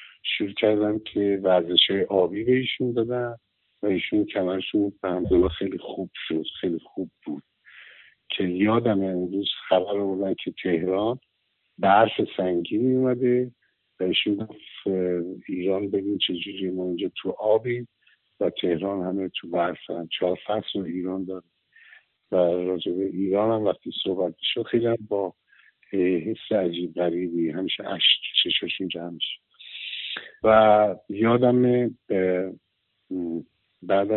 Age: 50-69